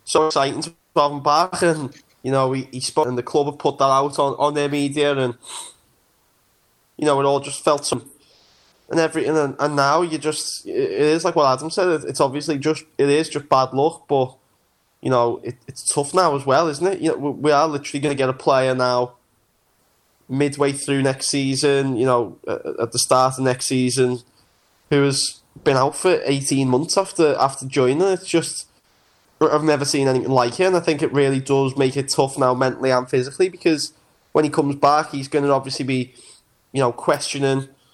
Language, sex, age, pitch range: English, male, 10-29, 130-150 Hz